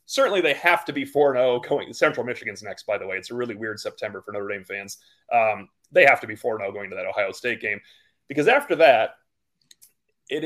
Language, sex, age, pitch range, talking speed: English, male, 30-49, 115-155 Hz, 220 wpm